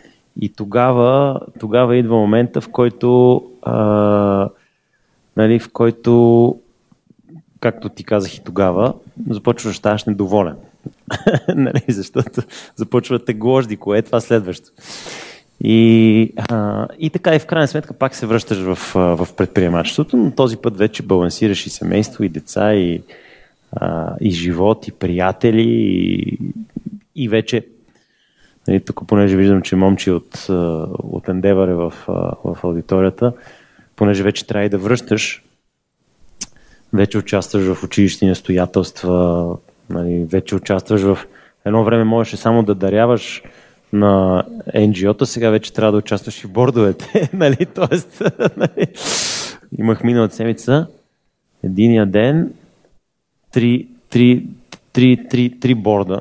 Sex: male